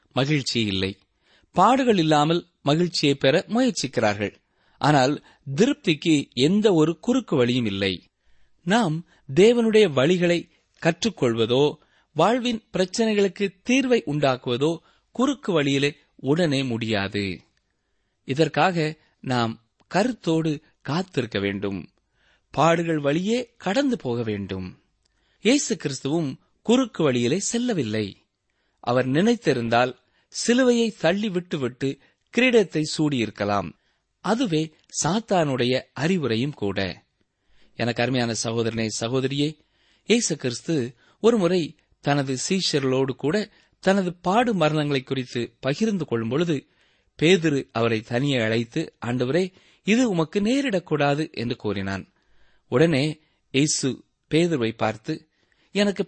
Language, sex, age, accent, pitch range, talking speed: Tamil, male, 30-49, native, 120-185 Hz, 90 wpm